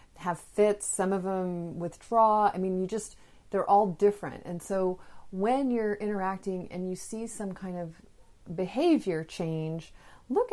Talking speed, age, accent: 155 wpm, 30-49, American